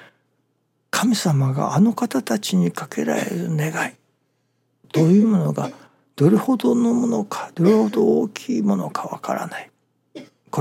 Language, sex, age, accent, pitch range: Japanese, male, 60-79, native, 135-200 Hz